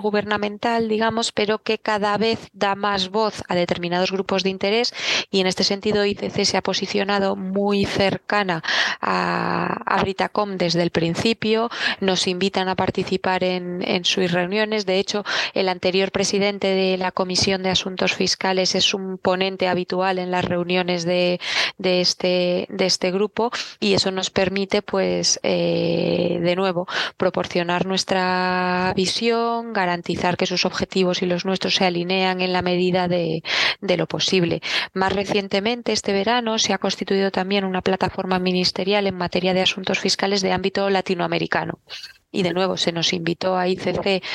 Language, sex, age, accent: Spanish, female, 20-39, Spanish